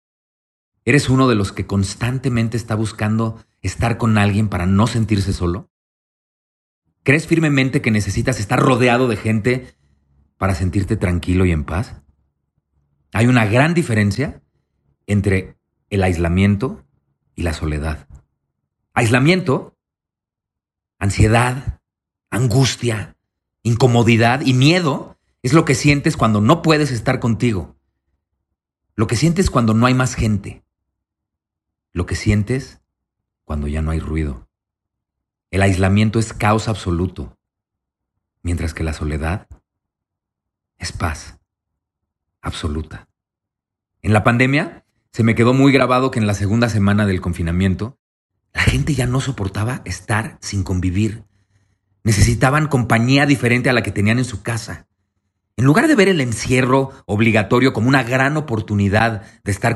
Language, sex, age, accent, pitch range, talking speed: Spanish, male, 40-59, Mexican, 90-120 Hz, 130 wpm